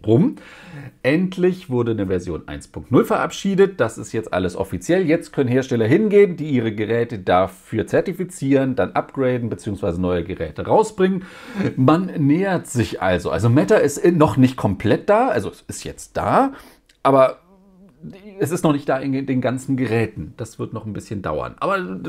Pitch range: 105-160 Hz